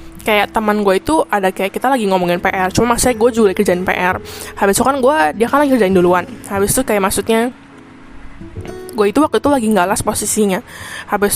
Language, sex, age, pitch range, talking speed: Indonesian, female, 10-29, 195-235 Hz, 200 wpm